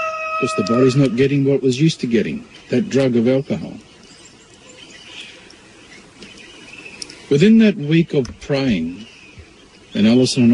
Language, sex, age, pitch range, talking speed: English, male, 50-69, 130-190 Hz, 120 wpm